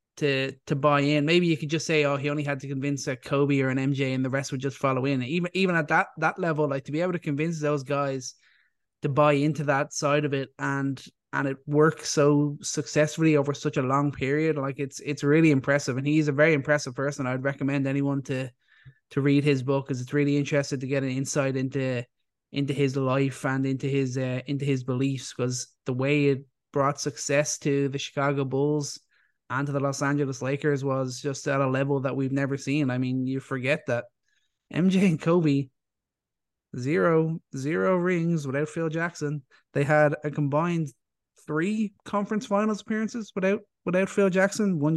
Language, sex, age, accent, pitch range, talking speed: English, male, 20-39, Irish, 135-155 Hz, 200 wpm